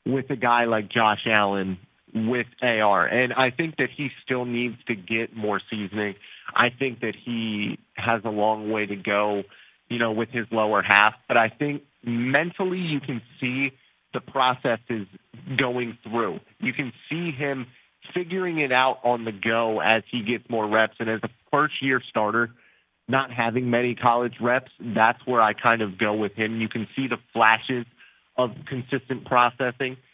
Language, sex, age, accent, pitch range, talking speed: English, male, 30-49, American, 110-125 Hz, 175 wpm